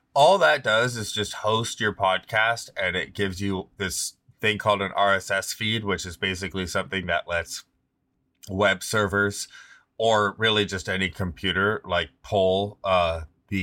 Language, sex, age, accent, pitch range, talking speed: English, male, 20-39, American, 90-110 Hz, 160 wpm